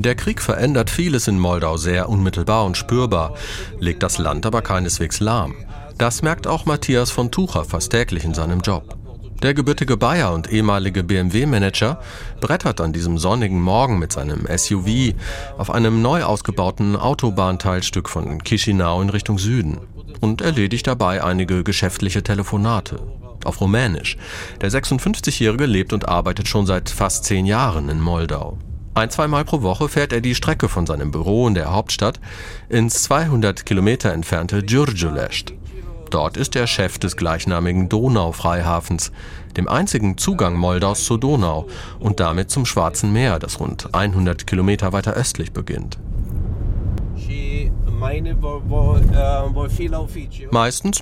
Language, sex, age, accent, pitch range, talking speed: German, male, 40-59, German, 90-115 Hz, 135 wpm